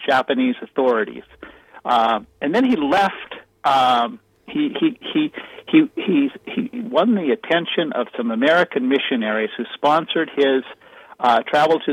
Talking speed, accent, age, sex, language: 140 wpm, American, 60-79, male, English